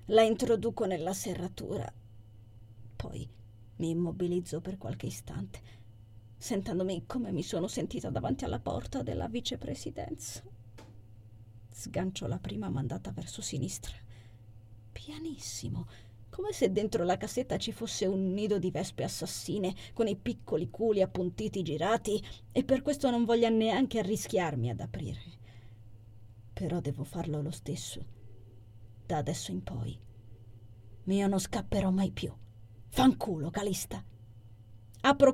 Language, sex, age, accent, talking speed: Italian, female, 30-49, native, 120 wpm